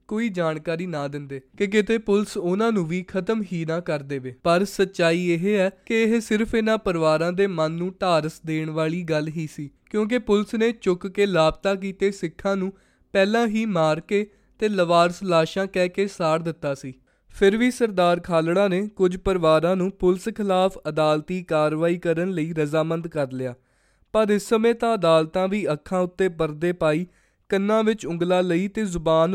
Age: 20-39